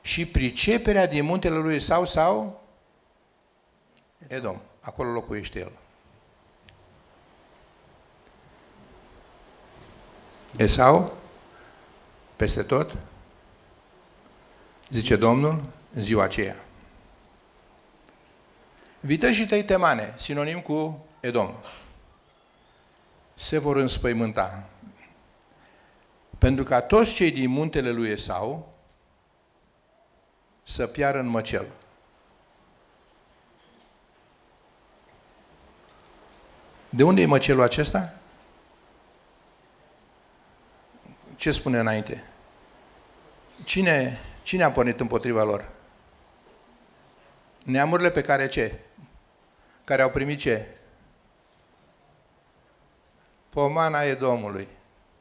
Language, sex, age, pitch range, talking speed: Romanian, male, 50-69, 105-155 Hz, 70 wpm